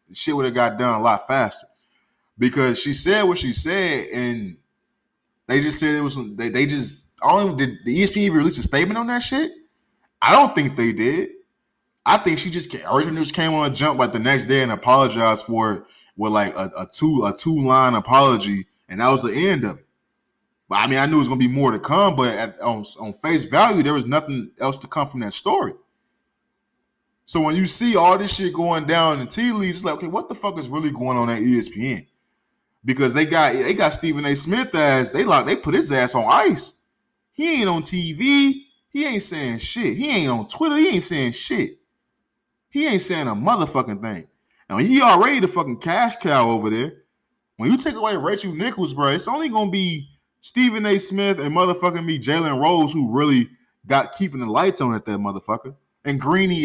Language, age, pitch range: English, 20-39, 125-195 Hz